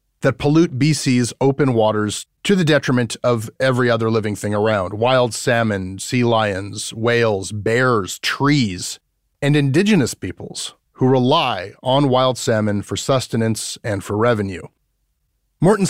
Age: 30-49